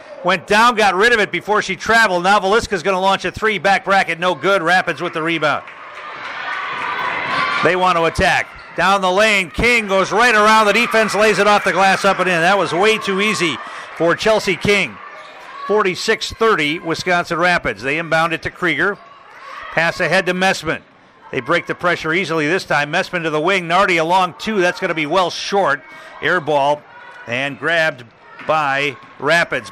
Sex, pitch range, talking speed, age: male, 155-195 Hz, 180 wpm, 50-69